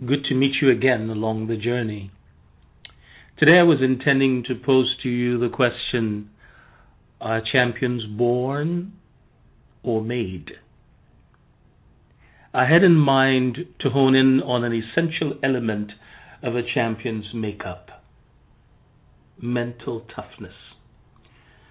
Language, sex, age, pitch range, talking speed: English, male, 50-69, 115-135 Hz, 110 wpm